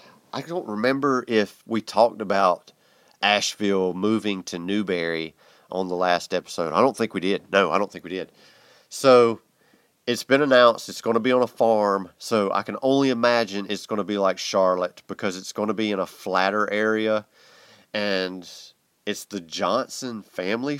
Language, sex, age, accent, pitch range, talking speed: English, male, 30-49, American, 90-115 Hz, 180 wpm